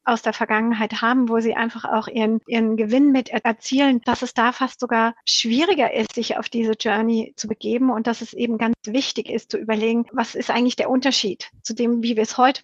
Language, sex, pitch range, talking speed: German, female, 220-245 Hz, 220 wpm